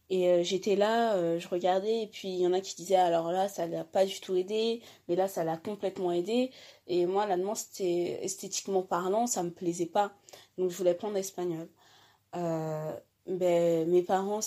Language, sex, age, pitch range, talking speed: French, female, 20-39, 180-205 Hz, 200 wpm